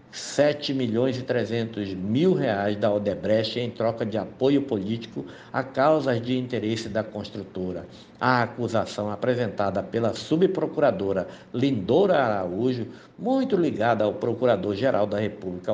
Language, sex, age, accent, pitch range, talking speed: Portuguese, male, 60-79, Brazilian, 105-125 Hz, 120 wpm